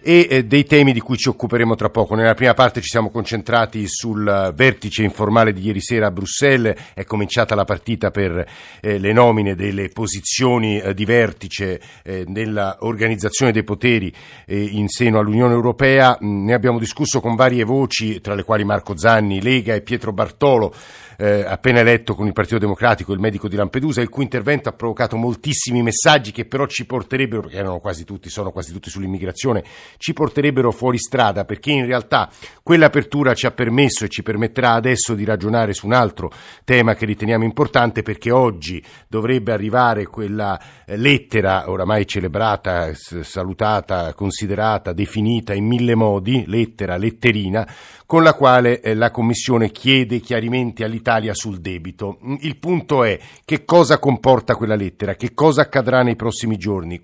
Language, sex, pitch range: Italian, male, 105-125 Hz